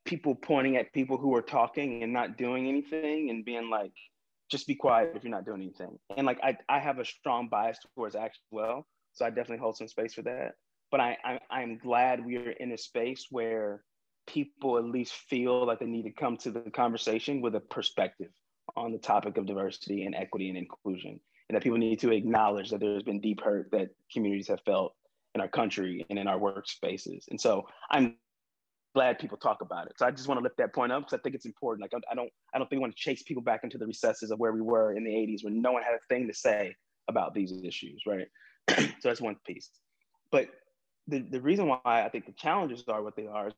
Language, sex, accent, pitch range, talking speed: English, male, American, 110-145 Hz, 235 wpm